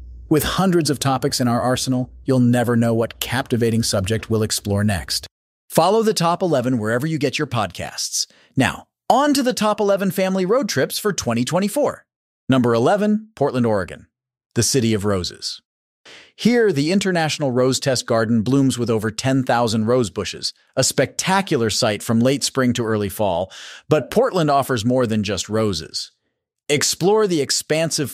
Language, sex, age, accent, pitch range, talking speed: English, male, 40-59, American, 115-150 Hz, 160 wpm